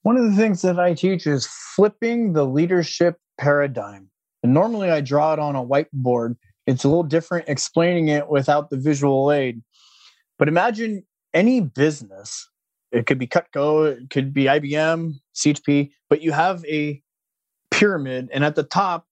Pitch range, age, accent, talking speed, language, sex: 140-165 Hz, 30-49, American, 165 wpm, English, male